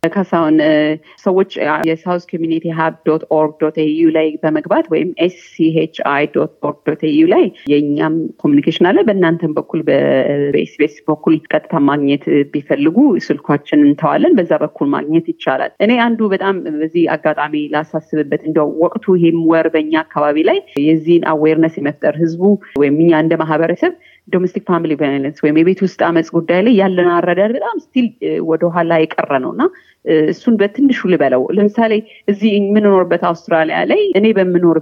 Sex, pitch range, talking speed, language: female, 155-215 Hz, 115 wpm, Amharic